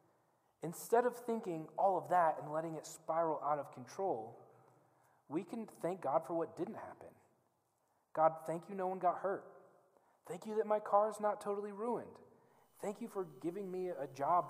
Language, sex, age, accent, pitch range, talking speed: English, male, 30-49, American, 155-215 Hz, 180 wpm